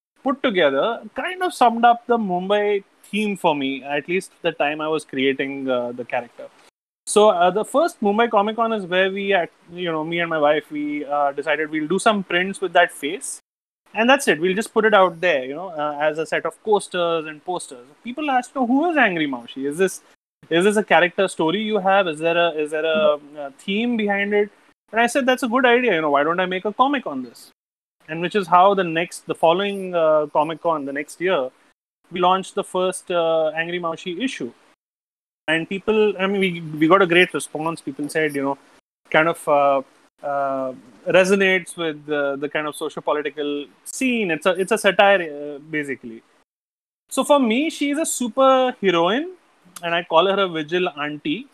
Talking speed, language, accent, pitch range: 210 wpm, English, Indian, 155-215 Hz